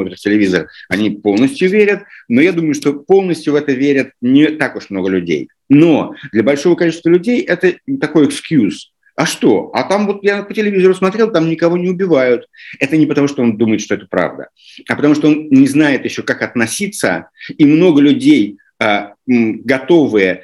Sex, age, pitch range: male, 50-69, 115-185 Hz